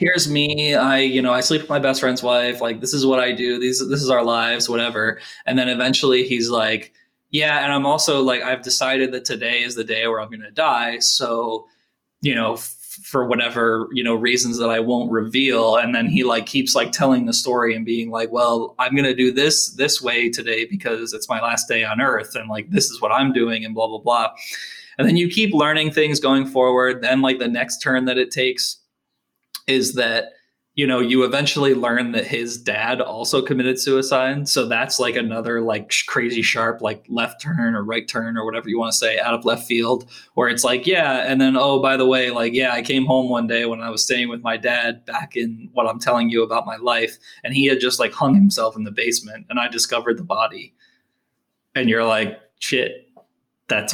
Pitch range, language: 115-135 Hz, English